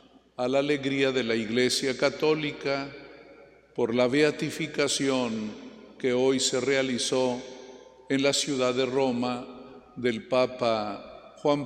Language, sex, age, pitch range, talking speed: Spanish, male, 50-69, 130-150 Hz, 115 wpm